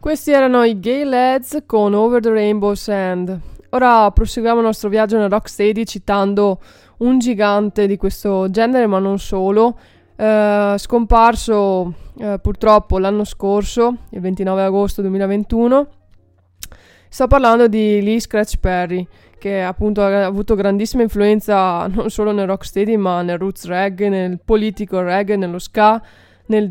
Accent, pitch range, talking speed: native, 190-225 Hz, 135 wpm